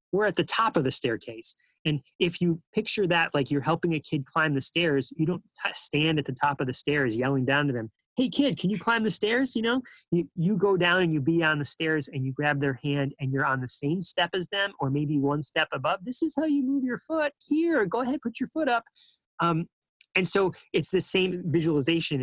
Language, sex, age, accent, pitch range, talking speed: English, male, 30-49, American, 135-170 Hz, 245 wpm